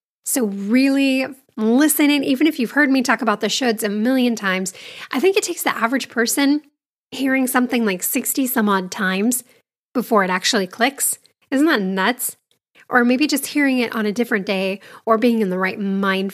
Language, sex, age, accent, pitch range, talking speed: English, female, 10-29, American, 200-265 Hz, 185 wpm